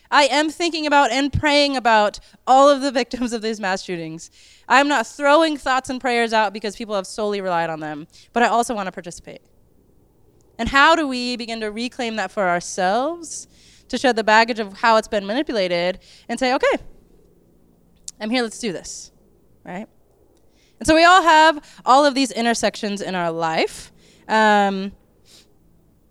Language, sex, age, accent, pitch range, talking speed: English, female, 20-39, American, 210-275 Hz, 175 wpm